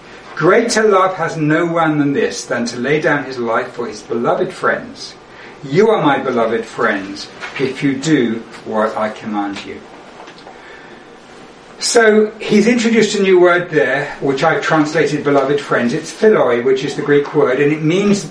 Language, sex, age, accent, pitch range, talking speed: English, male, 60-79, British, 135-180 Hz, 165 wpm